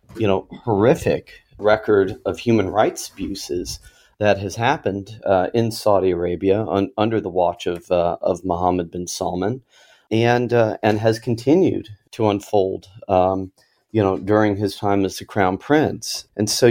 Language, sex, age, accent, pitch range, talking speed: English, male, 40-59, American, 90-105 Hz, 160 wpm